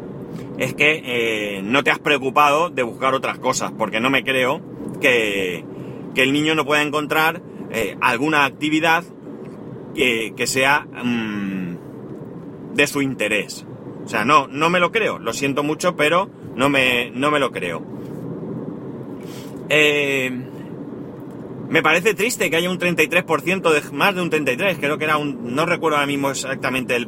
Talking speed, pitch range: 155 wpm, 125-160 Hz